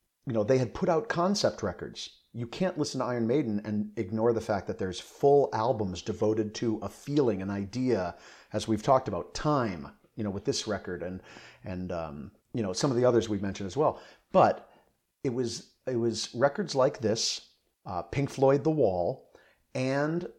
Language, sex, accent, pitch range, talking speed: English, male, American, 105-125 Hz, 190 wpm